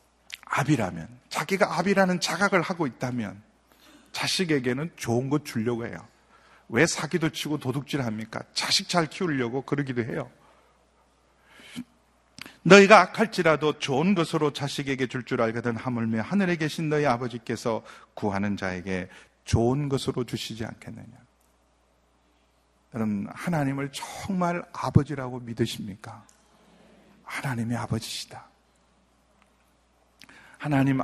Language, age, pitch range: Korean, 40-59, 115-155 Hz